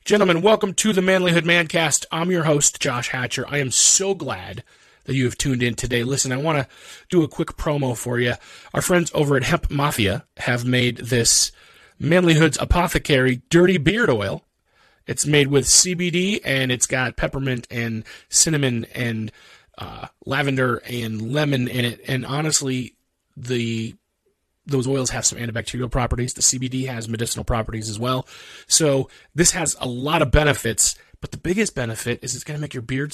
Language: English